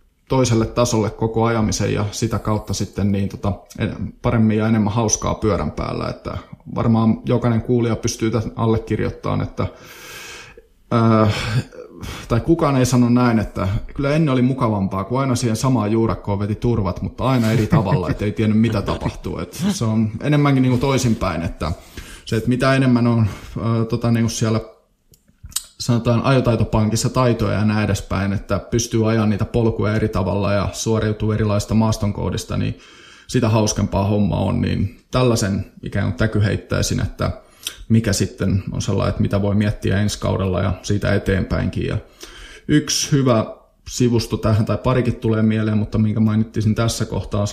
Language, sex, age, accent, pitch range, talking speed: Finnish, male, 20-39, native, 105-120 Hz, 155 wpm